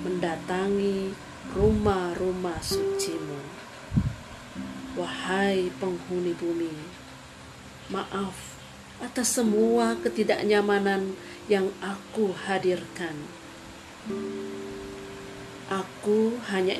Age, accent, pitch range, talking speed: 40-59, native, 180-225 Hz, 55 wpm